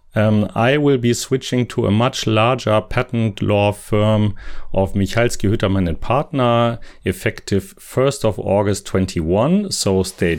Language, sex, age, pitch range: English, male, 40-59, 100-135 Hz